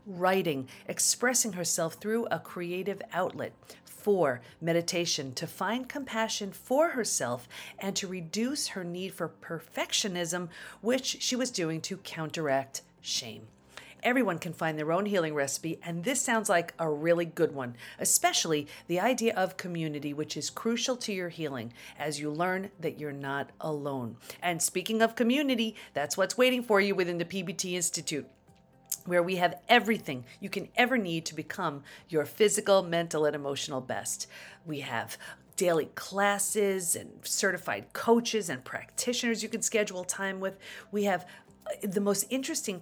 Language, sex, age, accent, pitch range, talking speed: English, female, 40-59, American, 155-215 Hz, 155 wpm